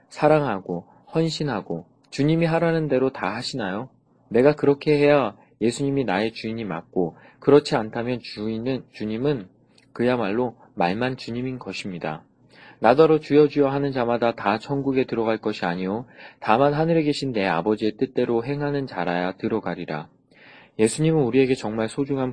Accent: native